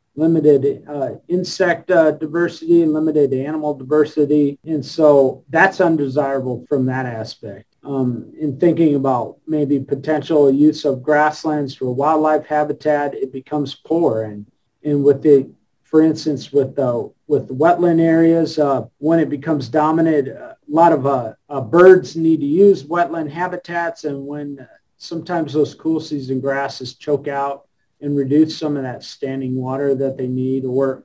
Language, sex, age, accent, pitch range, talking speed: English, male, 40-59, American, 135-160 Hz, 155 wpm